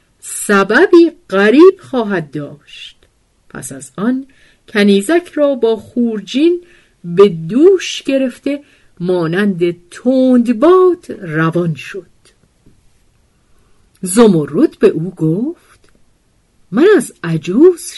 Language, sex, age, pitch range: Persian, female, 50-69, 165-250 Hz